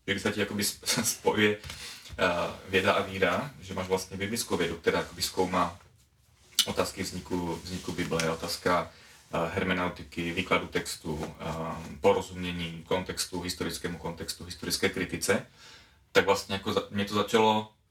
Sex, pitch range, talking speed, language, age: male, 90-105 Hz, 120 wpm, Czech, 30-49